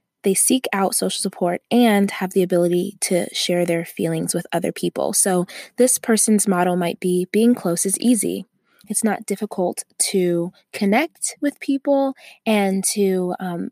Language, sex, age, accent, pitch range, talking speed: English, female, 20-39, American, 175-205 Hz, 160 wpm